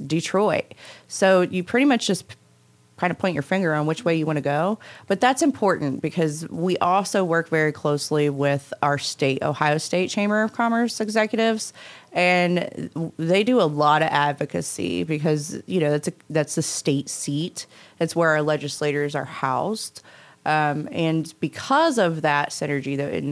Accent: American